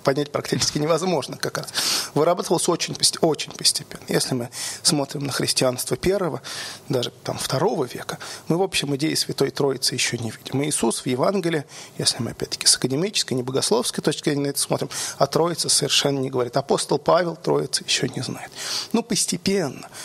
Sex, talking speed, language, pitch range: male, 165 wpm, Russian, 135-175 Hz